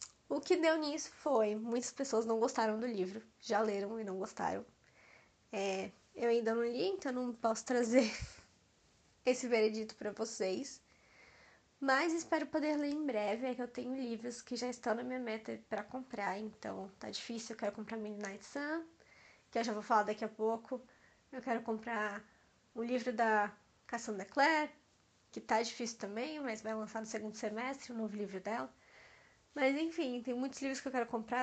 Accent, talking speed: Brazilian, 180 wpm